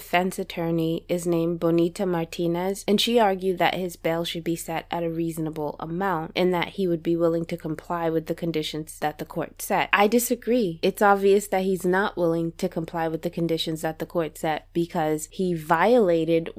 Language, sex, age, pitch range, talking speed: English, female, 20-39, 160-180 Hz, 195 wpm